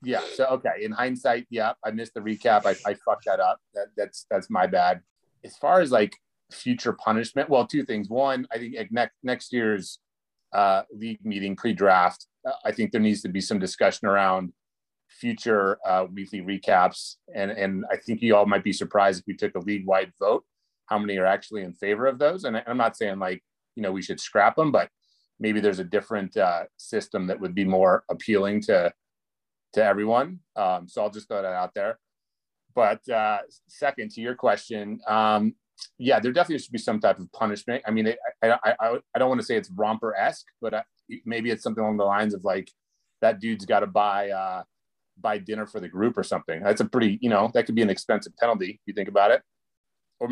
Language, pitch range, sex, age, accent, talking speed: English, 100-115 Hz, male, 30-49, American, 210 wpm